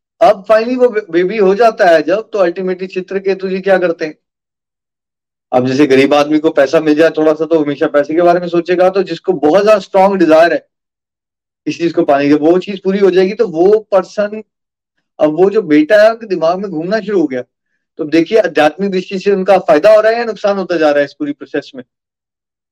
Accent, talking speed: native, 225 wpm